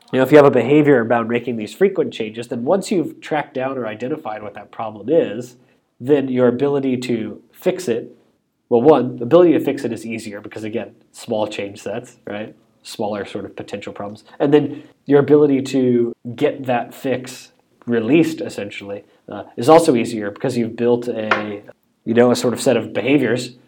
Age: 20-39